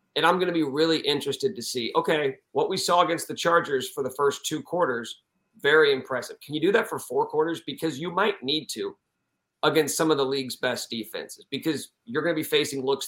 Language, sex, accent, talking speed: English, male, American, 225 wpm